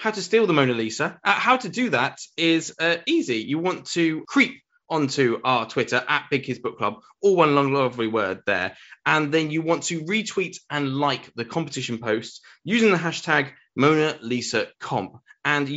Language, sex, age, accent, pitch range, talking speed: English, male, 20-39, British, 120-175 Hz, 185 wpm